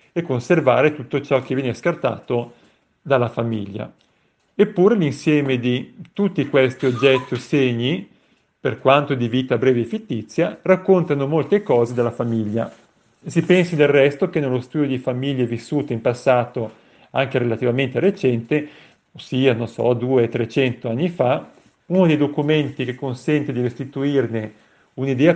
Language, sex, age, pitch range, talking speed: Italian, male, 40-59, 125-150 Hz, 135 wpm